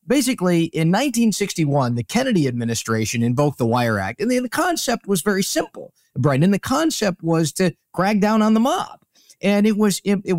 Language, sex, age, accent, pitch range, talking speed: English, male, 30-49, American, 140-205 Hz, 190 wpm